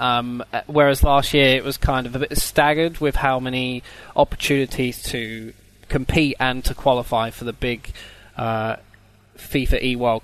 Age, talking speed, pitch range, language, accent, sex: 20-39, 150 wpm, 120-140 Hz, English, British, male